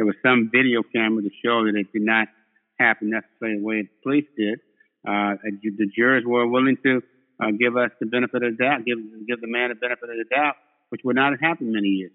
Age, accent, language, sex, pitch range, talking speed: 60-79, American, English, male, 110-135 Hz, 235 wpm